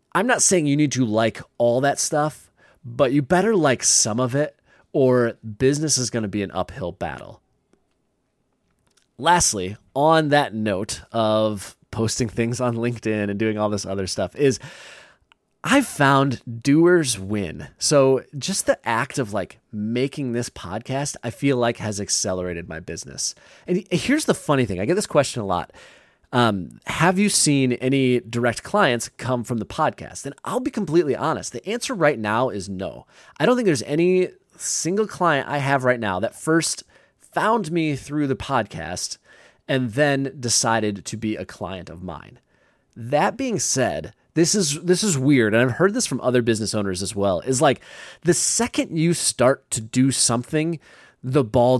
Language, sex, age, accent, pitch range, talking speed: English, male, 30-49, American, 110-155 Hz, 175 wpm